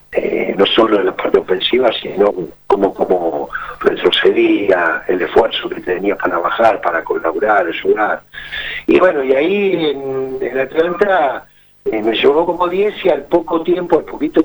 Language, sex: Spanish, male